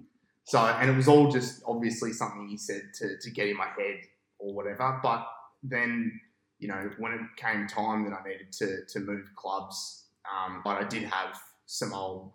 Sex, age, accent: male, 20-39, Australian